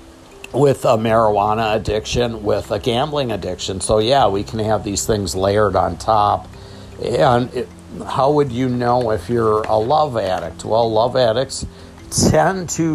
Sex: male